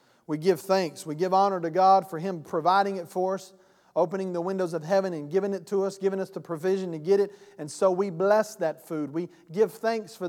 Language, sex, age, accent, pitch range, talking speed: English, male, 40-59, American, 165-205 Hz, 240 wpm